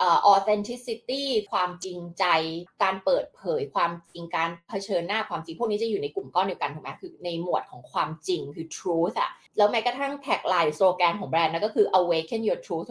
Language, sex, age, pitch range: Thai, female, 20-39, 175-265 Hz